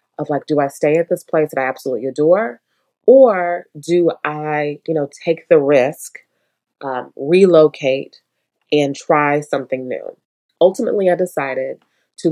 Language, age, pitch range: English, 30-49, 145-175 Hz